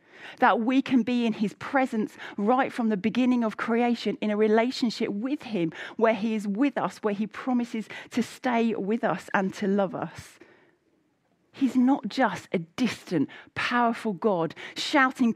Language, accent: English, British